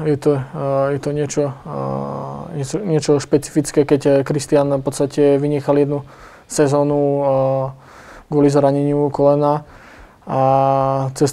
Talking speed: 105 wpm